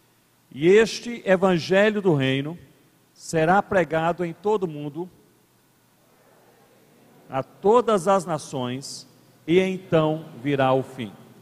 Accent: Brazilian